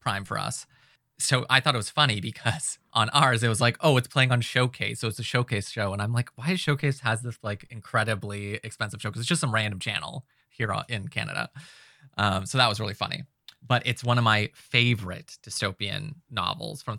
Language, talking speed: English, 215 wpm